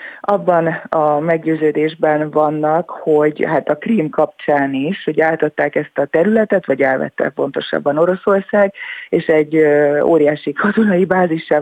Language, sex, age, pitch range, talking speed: Hungarian, female, 30-49, 150-170 Hz, 130 wpm